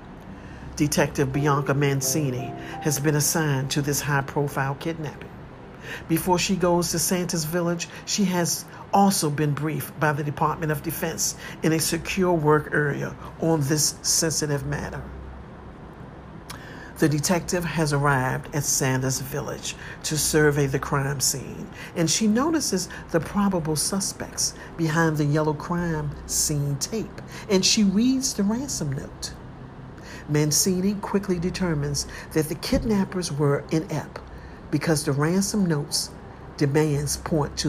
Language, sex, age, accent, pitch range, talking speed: English, male, 50-69, American, 145-175 Hz, 130 wpm